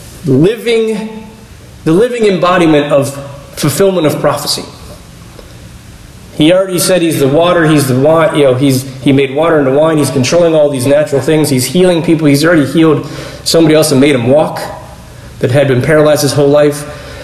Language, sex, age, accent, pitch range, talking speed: English, male, 30-49, American, 135-160 Hz, 175 wpm